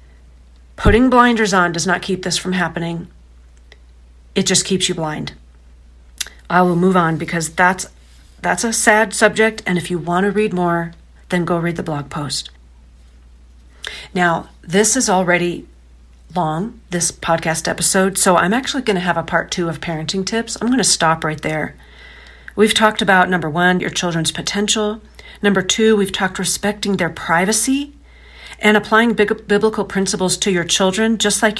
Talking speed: 165 wpm